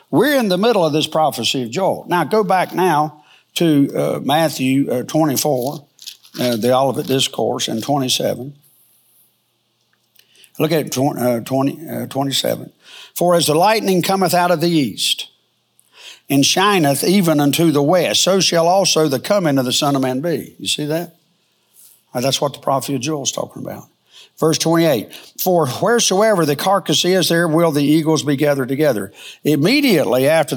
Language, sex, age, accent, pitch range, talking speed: English, male, 60-79, American, 140-175 Hz, 165 wpm